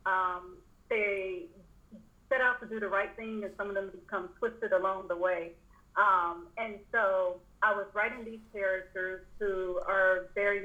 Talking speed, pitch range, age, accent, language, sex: 165 wpm, 185-215 Hz, 40-59, American, English, female